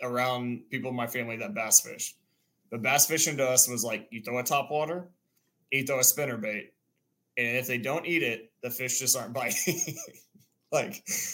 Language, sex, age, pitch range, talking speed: English, male, 20-39, 115-130 Hz, 195 wpm